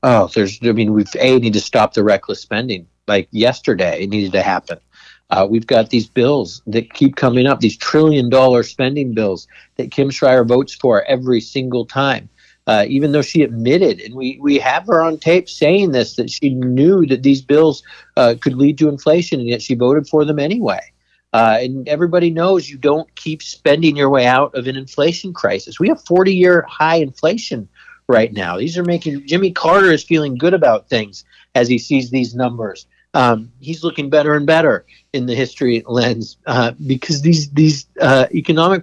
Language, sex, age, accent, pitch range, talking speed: English, male, 50-69, American, 125-155 Hz, 195 wpm